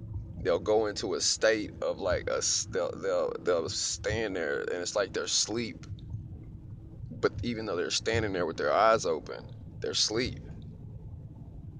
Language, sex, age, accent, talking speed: English, male, 30-49, American, 155 wpm